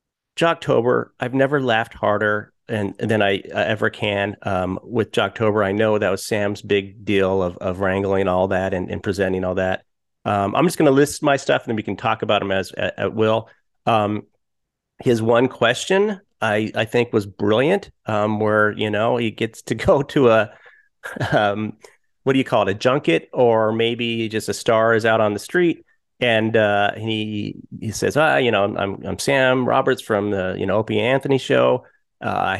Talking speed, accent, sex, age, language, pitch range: 200 wpm, American, male, 40-59, English, 100-125 Hz